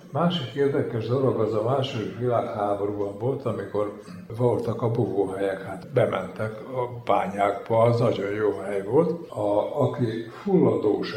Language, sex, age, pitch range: Hungarian, male, 60-79, 105-140 Hz